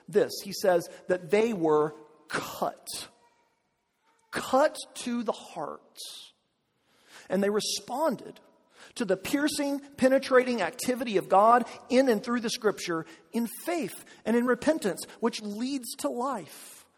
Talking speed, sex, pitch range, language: 125 wpm, male, 190-270 Hz, English